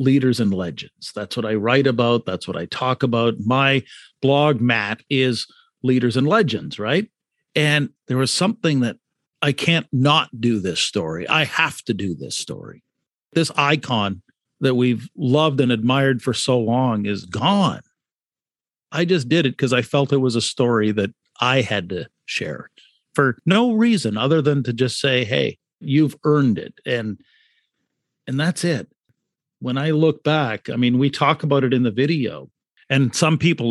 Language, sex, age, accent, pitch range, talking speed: English, male, 50-69, American, 120-155 Hz, 175 wpm